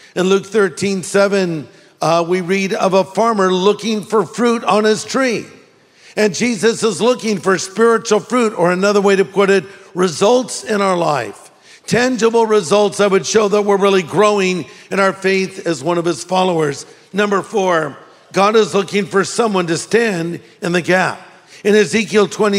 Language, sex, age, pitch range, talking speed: English, male, 50-69, 180-210 Hz, 165 wpm